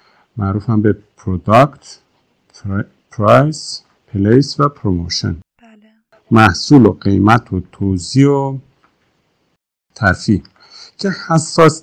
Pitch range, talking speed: 100-145 Hz, 75 wpm